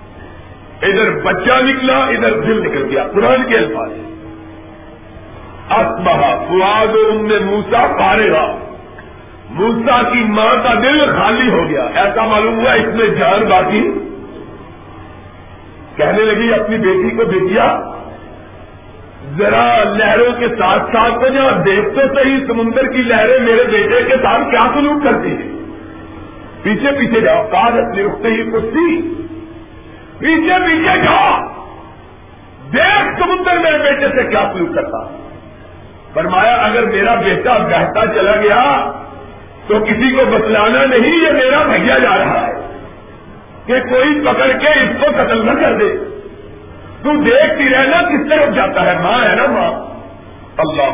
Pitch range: 205-295 Hz